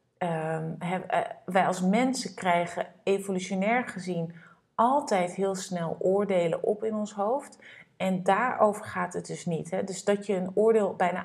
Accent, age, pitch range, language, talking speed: Dutch, 30-49, 175-215 Hz, Dutch, 160 wpm